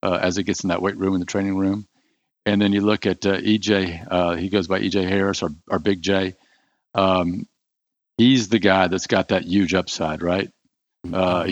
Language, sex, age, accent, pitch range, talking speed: English, male, 50-69, American, 95-105 Hz, 210 wpm